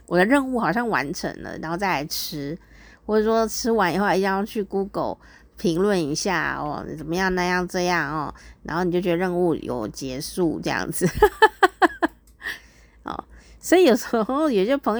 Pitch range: 175-235 Hz